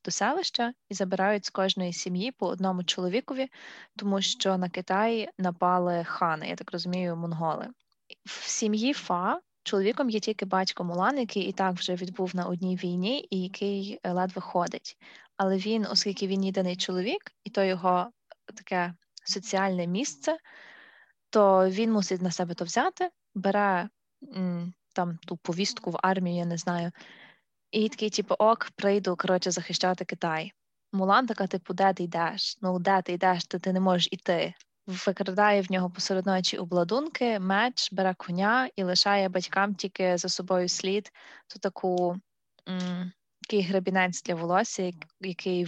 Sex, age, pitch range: female, 20-39, 180-205 Hz